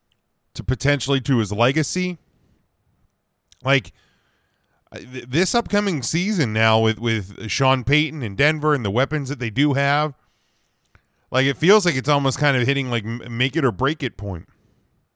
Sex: male